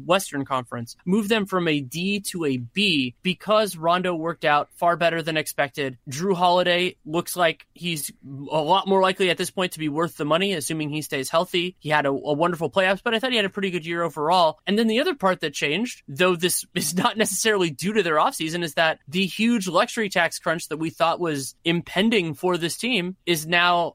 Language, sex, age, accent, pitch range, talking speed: English, male, 30-49, American, 150-185 Hz, 220 wpm